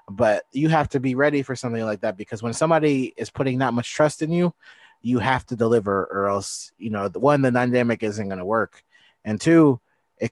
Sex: male